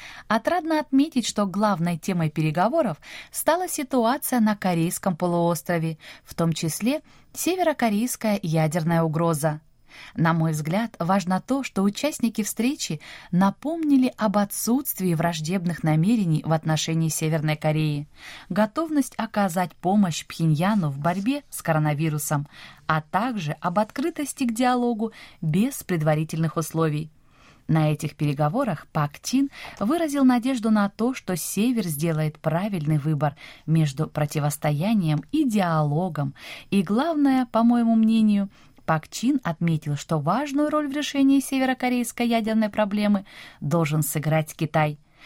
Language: Russian